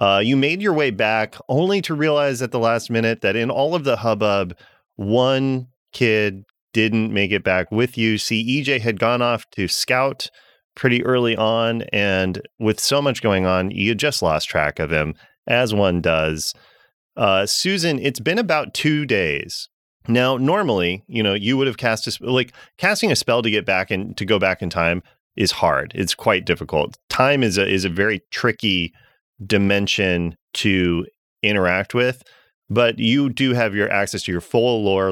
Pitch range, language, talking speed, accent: 95-125 Hz, English, 185 wpm, American